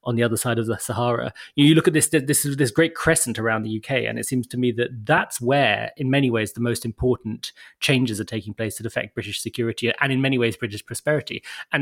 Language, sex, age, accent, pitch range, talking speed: English, male, 30-49, British, 115-140 Hz, 245 wpm